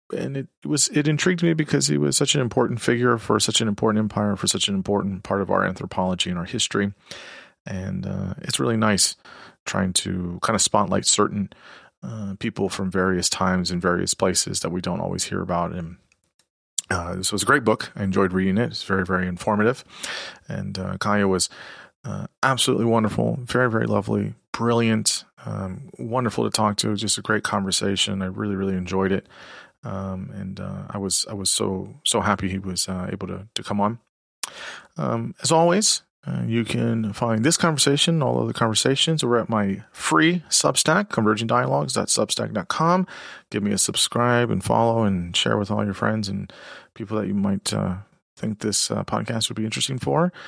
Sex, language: male, English